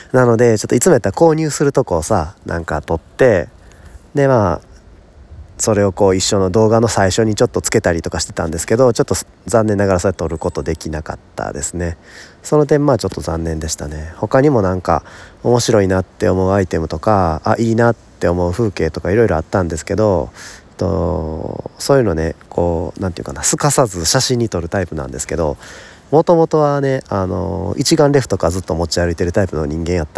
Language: Japanese